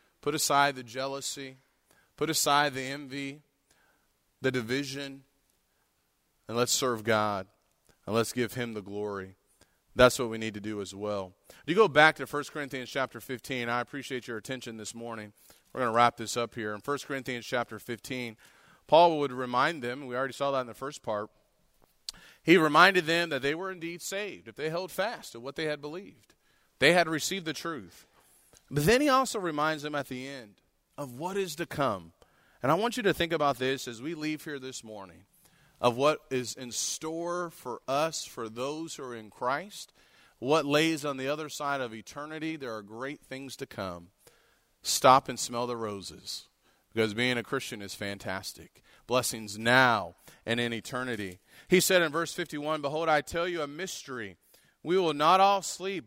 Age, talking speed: 30-49, 190 wpm